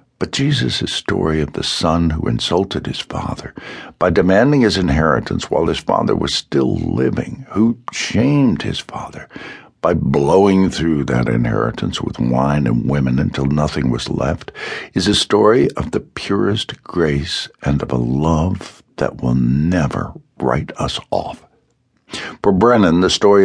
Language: English